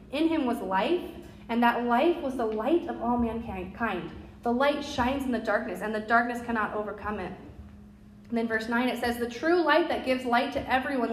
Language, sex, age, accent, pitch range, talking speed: English, female, 30-49, American, 210-275 Hz, 210 wpm